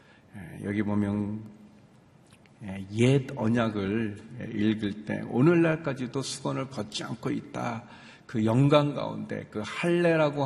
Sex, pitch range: male, 105-130 Hz